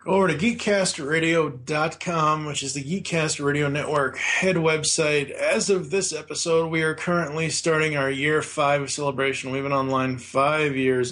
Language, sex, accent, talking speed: English, male, American, 155 wpm